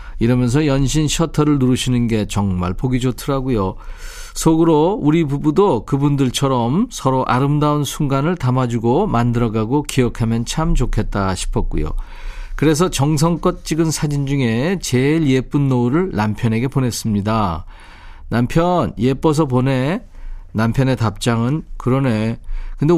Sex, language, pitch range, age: male, Korean, 115-155 Hz, 40-59